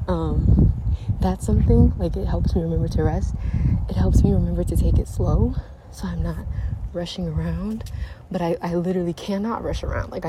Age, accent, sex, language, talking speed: 20-39, American, female, English, 180 wpm